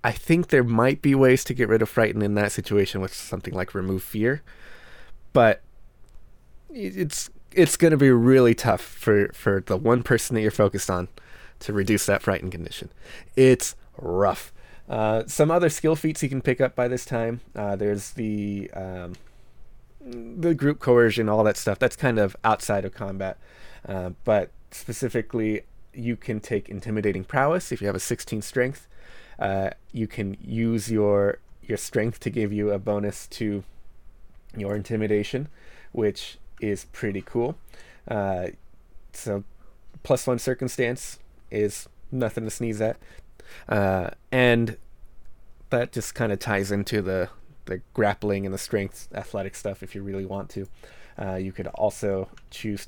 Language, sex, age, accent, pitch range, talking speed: English, male, 20-39, American, 95-120 Hz, 160 wpm